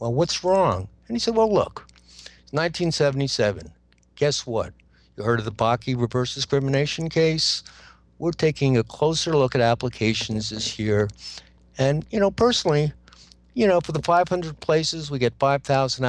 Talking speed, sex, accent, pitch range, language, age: 155 wpm, male, American, 105-140 Hz, English, 60-79